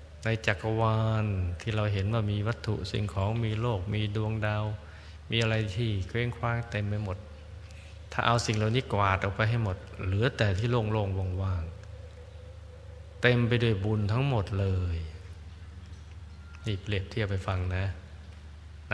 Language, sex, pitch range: Thai, male, 85-105 Hz